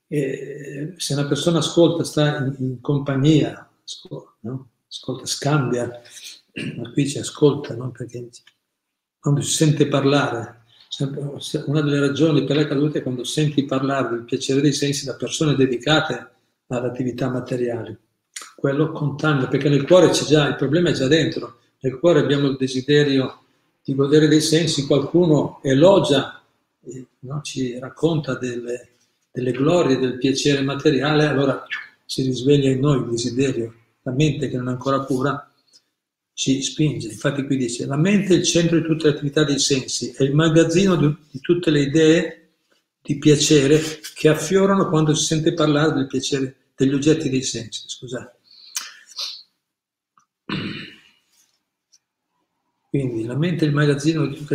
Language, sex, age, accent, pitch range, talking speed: Italian, male, 50-69, native, 130-155 Hz, 145 wpm